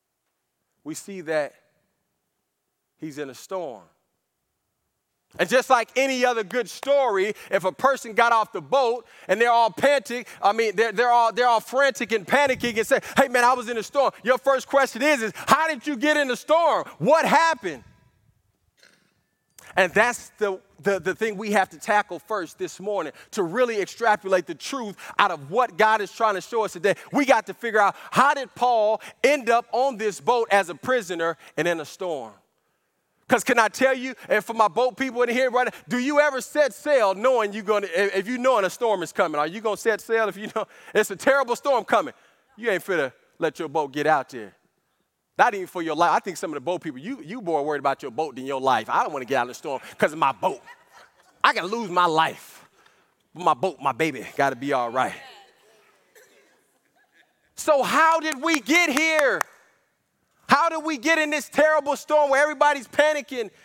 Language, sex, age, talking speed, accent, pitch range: English, male, 30-49, 210 wpm, American, 190-275 Hz